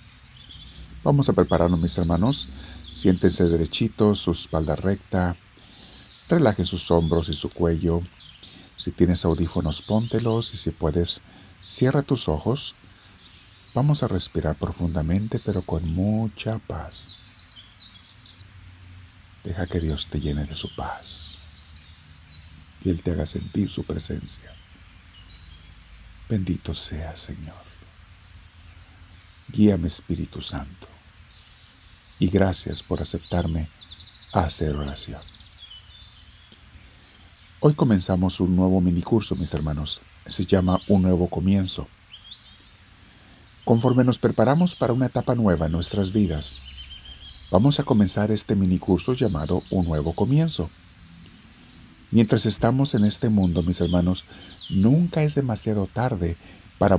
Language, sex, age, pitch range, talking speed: Spanish, male, 50-69, 85-100 Hz, 110 wpm